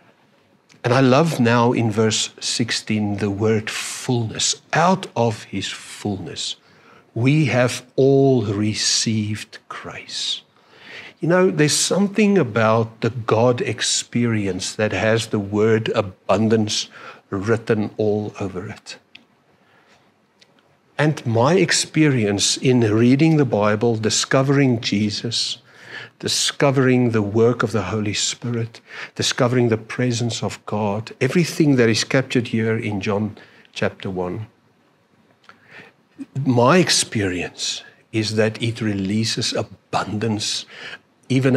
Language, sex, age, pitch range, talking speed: English, male, 60-79, 105-130 Hz, 105 wpm